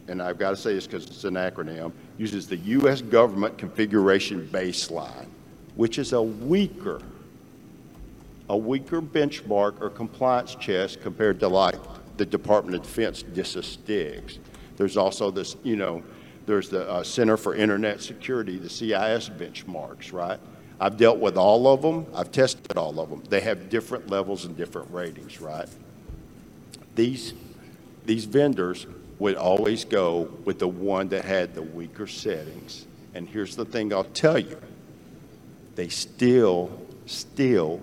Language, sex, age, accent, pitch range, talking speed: English, male, 50-69, American, 90-125 Hz, 145 wpm